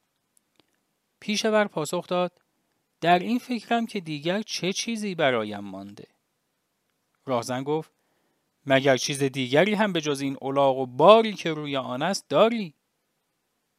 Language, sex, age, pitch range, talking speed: English, male, 40-59, 145-205 Hz, 120 wpm